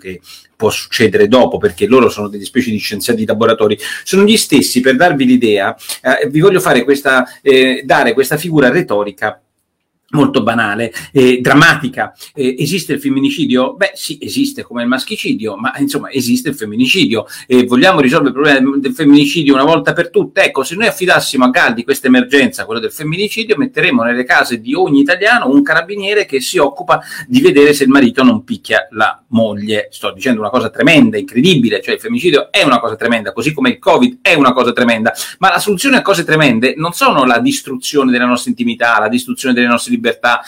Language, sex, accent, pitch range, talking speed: Italian, male, native, 125-205 Hz, 195 wpm